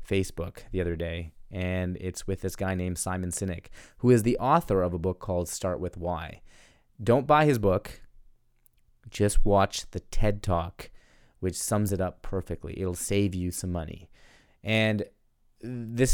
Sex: male